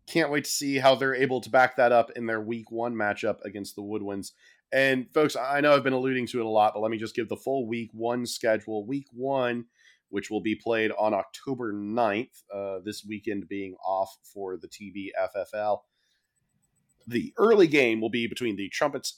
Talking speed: 205 wpm